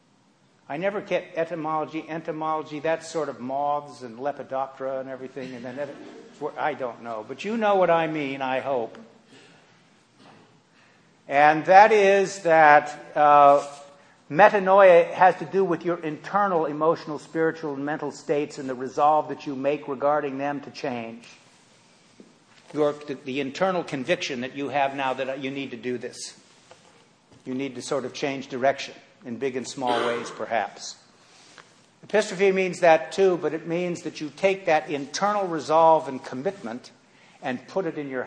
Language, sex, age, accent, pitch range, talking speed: English, male, 60-79, American, 130-165 Hz, 160 wpm